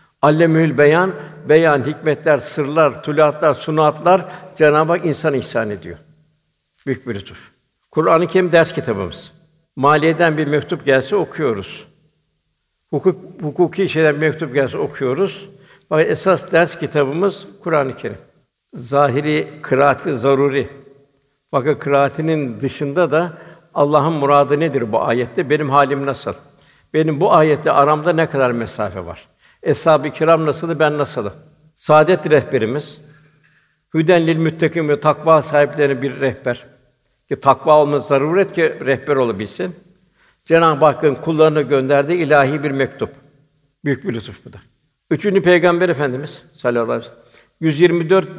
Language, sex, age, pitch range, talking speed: Turkish, male, 60-79, 140-165 Hz, 125 wpm